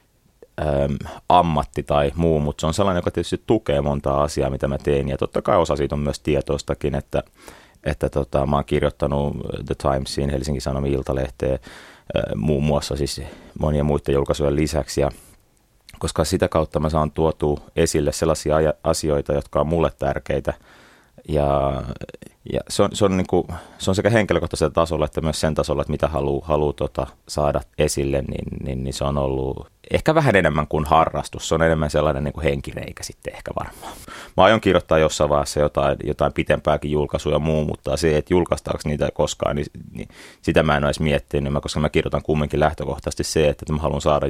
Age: 30-49